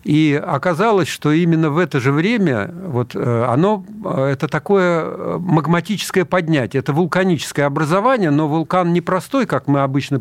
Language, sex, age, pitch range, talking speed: Russian, male, 50-69, 135-180 Hz, 135 wpm